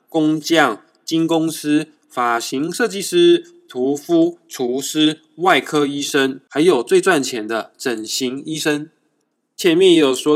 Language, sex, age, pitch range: Chinese, male, 20-39, 130-205 Hz